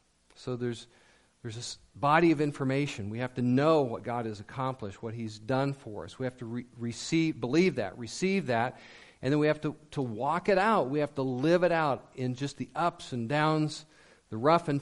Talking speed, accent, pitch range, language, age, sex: 215 wpm, American, 115-150 Hz, English, 50-69, male